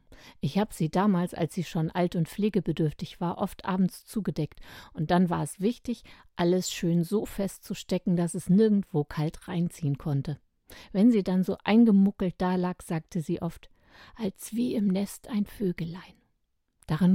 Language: German